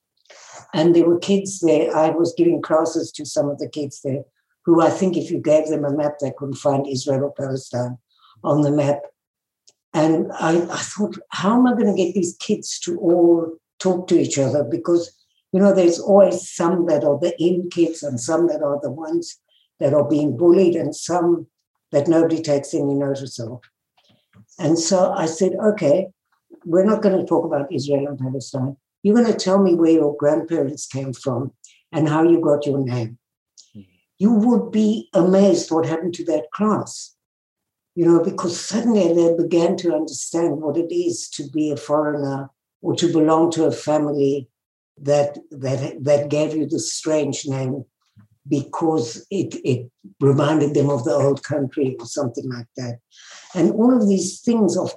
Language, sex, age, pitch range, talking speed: English, female, 60-79, 140-175 Hz, 180 wpm